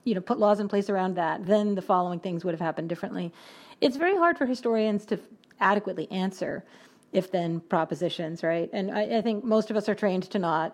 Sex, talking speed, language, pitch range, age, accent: female, 220 wpm, English, 180-215 Hz, 40-59, American